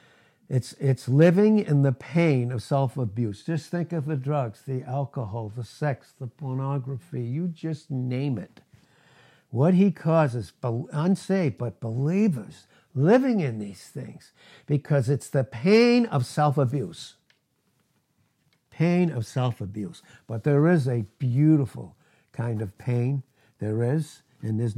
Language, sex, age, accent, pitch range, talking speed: English, male, 60-79, American, 120-160 Hz, 130 wpm